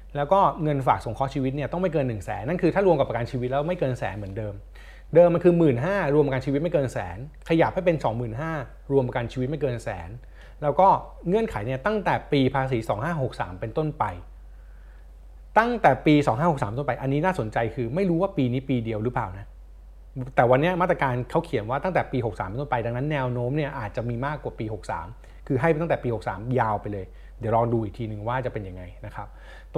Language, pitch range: Thai, 115-155 Hz